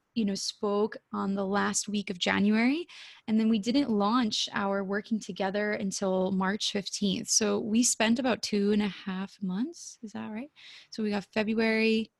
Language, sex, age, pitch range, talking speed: English, female, 20-39, 195-230 Hz, 175 wpm